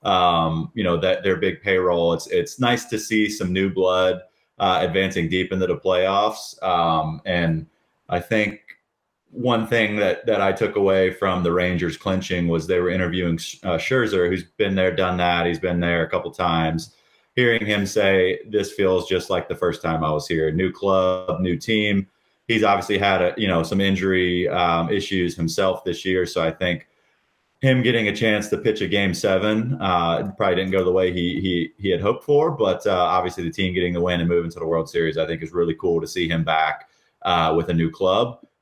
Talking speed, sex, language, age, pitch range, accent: 210 wpm, male, English, 30-49, 85-100 Hz, American